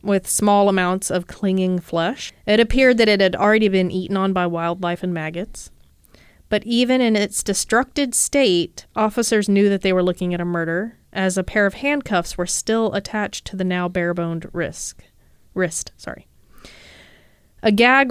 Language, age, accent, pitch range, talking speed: English, 30-49, American, 175-205 Hz, 165 wpm